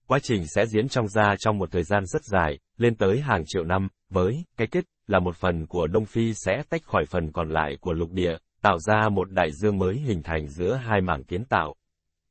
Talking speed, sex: 235 wpm, male